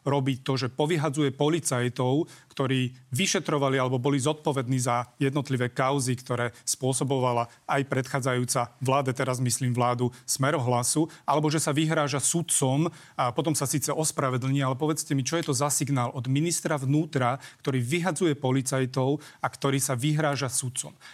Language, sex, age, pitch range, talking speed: Slovak, male, 30-49, 130-150 Hz, 150 wpm